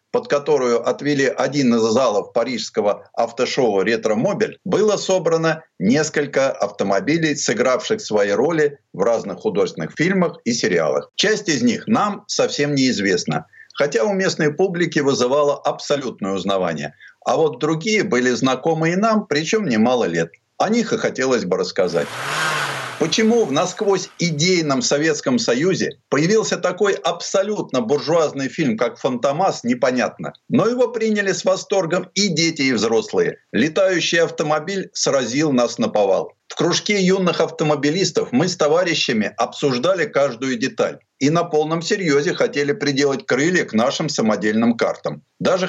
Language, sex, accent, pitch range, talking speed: Russian, male, native, 145-210 Hz, 135 wpm